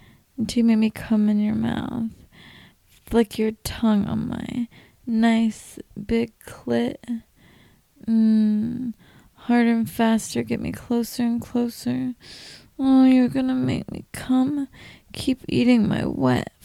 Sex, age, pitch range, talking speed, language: female, 20-39, 185-230 Hz, 125 wpm, English